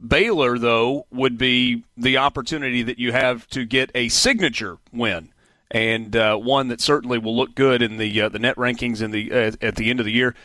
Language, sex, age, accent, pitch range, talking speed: English, male, 40-59, American, 120-145 Hz, 210 wpm